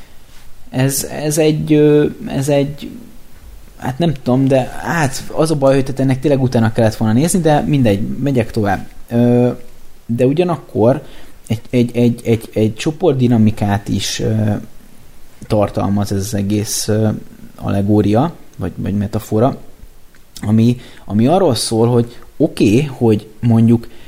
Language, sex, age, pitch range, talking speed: Hungarian, male, 20-39, 110-140 Hz, 125 wpm